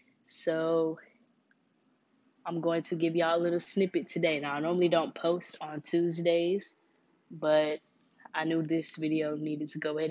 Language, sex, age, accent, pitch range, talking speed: English, female, 10-29, American, 150-175 Hz, 155 wpm